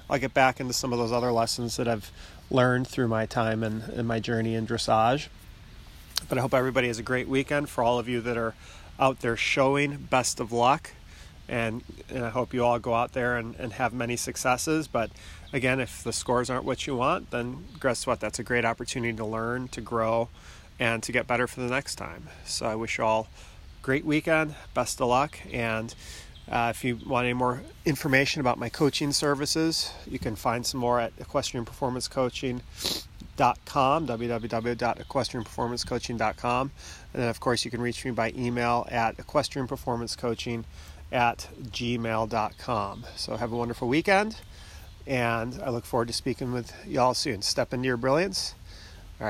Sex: male